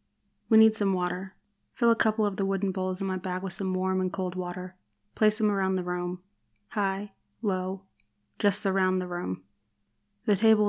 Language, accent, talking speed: English, American, 185 wpm